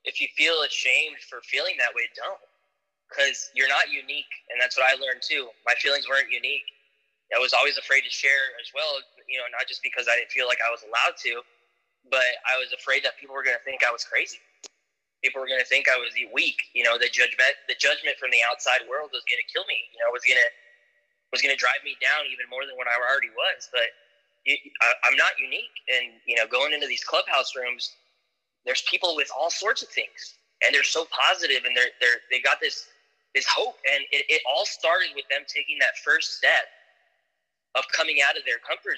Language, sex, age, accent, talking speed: English, male, 10-29, American, 225 wpm